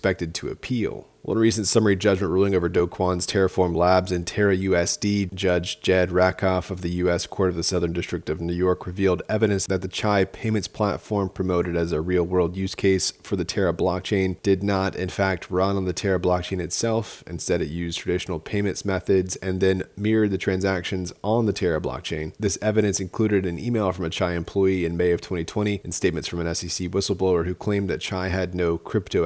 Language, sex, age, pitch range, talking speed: English, male, 30-49, 85-100 Hz, 195 wpm